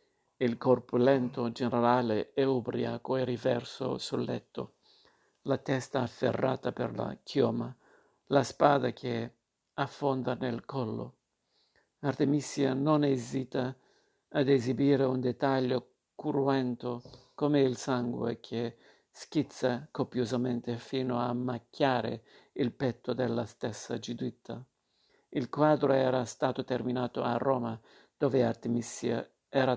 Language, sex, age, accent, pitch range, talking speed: Italian, male, 50-69, native, 120-135 Hz, 110 wpm